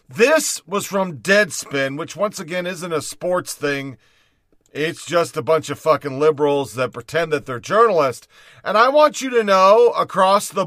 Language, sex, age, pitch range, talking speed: English, male, 40-59, 150-215 Hz, 175 wpm